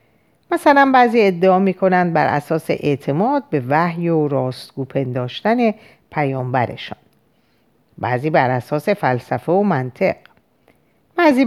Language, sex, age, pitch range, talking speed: Persian, female, 50-69, 130-195 Hz, 110 wpm